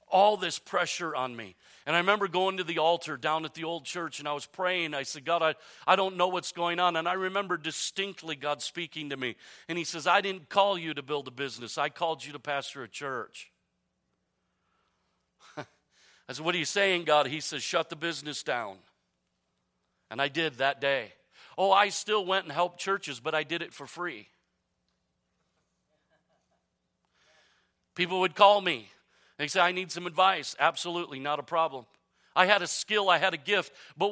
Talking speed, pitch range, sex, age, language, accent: 195 wpm, 145-190 Hz, male, 40-59, English, American